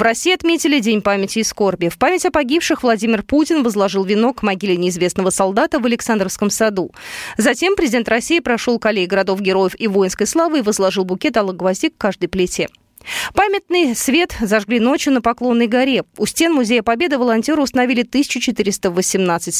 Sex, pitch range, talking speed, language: female, 195-295 Hz, 160 wpm, Russian